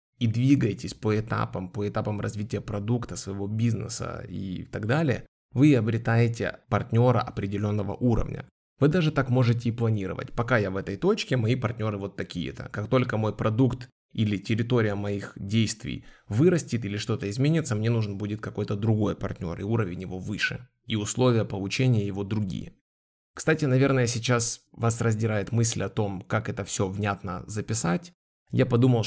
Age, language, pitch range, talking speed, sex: 20-39, Russian, 100-125 Hz, 155 wpm, male